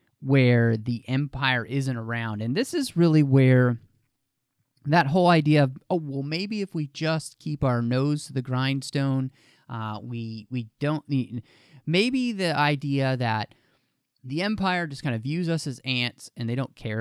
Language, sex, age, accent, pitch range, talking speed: English, male, 30-49, American, 120-150 Hz, 170 wpm